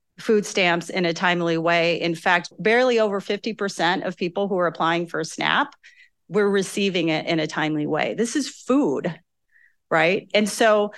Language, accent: English, American